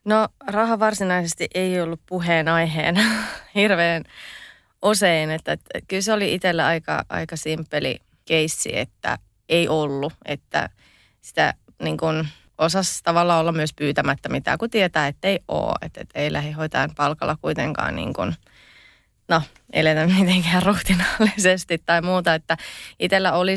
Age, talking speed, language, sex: 30-49, 130 wpm, Finnish, female